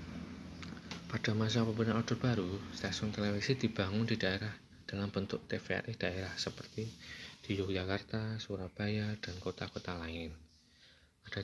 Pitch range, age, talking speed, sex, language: 95-115 Hz, 20-39, 115 wpm, male, Indonesian